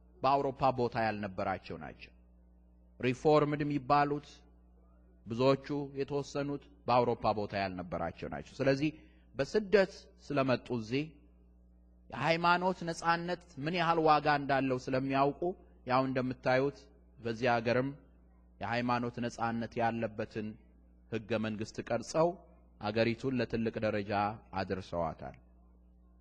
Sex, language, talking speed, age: male, Amharic, 80 wpm, 30-49